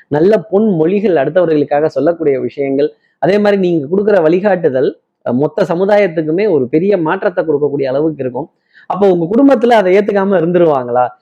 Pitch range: 145-200 Hz